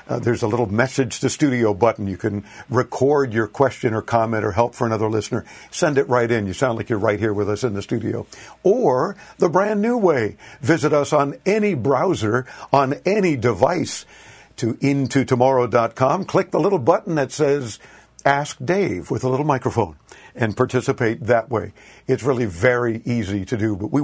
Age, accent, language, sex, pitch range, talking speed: 60-79, American, English, male, 120-160 Hz, 185 wpm